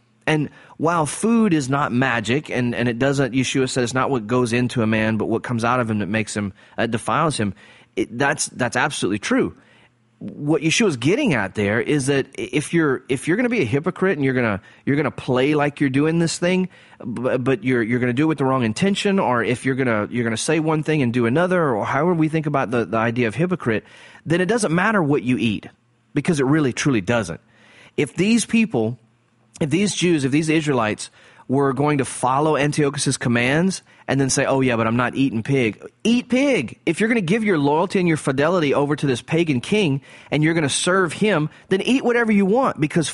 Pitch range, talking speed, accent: 120-160 Hz, 230 wpm, American